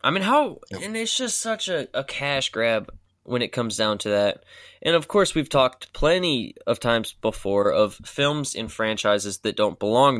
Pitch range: 115-160 Hz